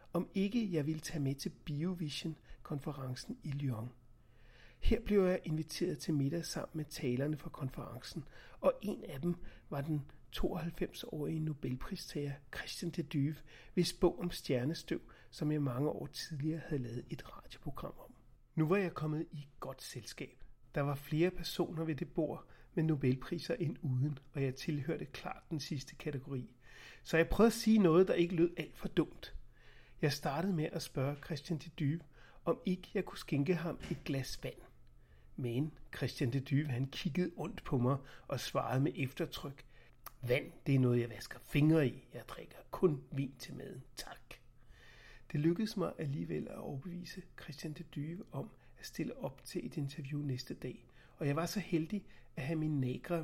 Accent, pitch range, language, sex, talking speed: native, 135-170 Hz, Danish, male, 175 wpm